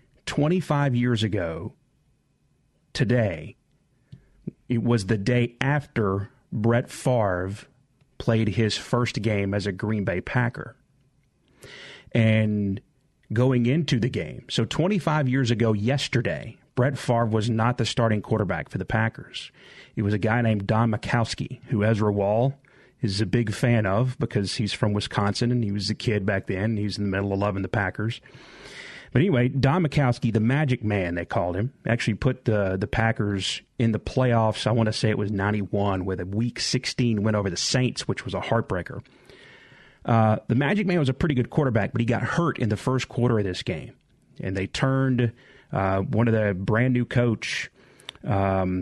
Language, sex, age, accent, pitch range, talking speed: English, male, 30-49, American, 105-130 Hz, 175 wpm